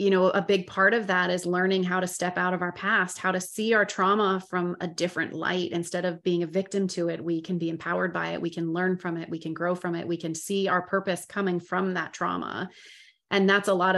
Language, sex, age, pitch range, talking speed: English, female, 30-49, 170-190 Hz, 260 wpm